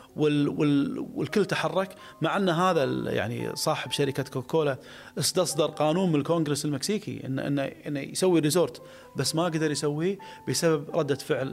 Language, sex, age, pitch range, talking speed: Arabic, male, 30-49, 130-165 Hz, 140 wpm